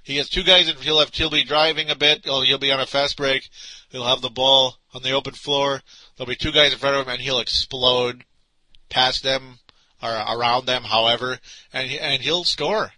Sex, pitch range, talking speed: male, 115-140 Hz, 225 wpm